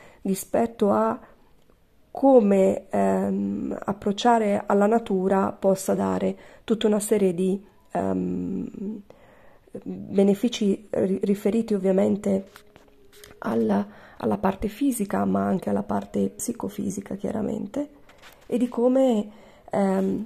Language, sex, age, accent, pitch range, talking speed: Italian, female, 40-59, native, 185-210 Hz, 90 wpm